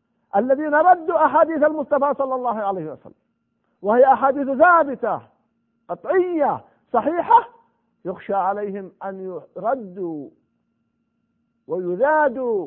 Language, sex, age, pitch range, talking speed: Arabic, male, 50-69, 230-305 Hz, 85 wpm